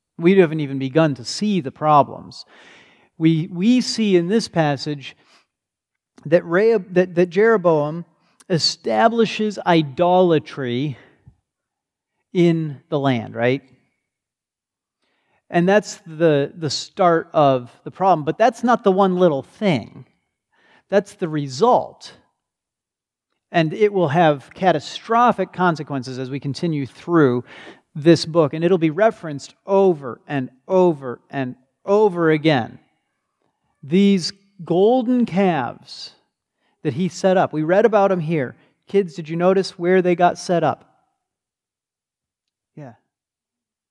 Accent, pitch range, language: American, 150-195 Hz, English